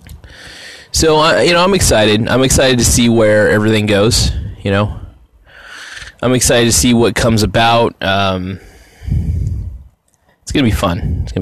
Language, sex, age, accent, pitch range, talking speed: English, male, 20-39, American, 95-120 Hz, 150 wpm